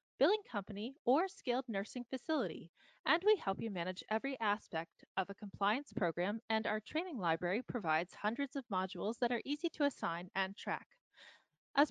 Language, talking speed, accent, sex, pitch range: English, 165 wpm, American, female, 185-250 Hz